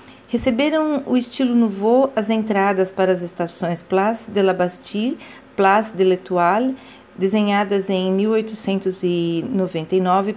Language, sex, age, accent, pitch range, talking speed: Portuguese, female, 40-59, Brazilian, 185-240 Hz, 110 wpm